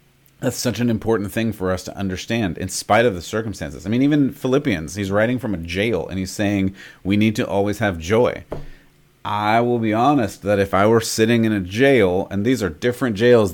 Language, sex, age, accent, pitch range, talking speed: English, male, 30-49, American, 95-115 Hz, 215 wpm